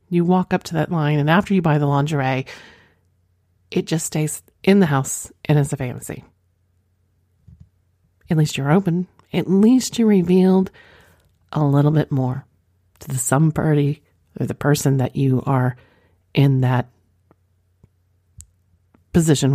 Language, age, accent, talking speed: English, 40-59, American, 145 wpm